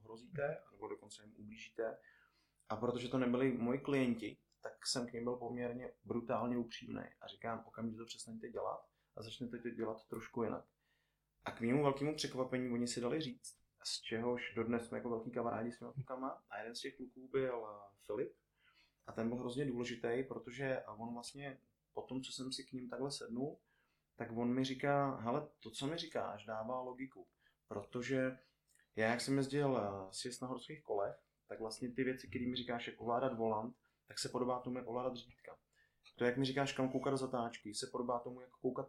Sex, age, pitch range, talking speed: male, 20-39, 115-130 Hz, 190 wpm